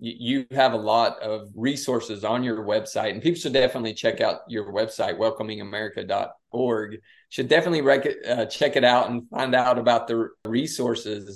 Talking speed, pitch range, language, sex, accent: 165 wpm, 110-125 Hz, English, male, American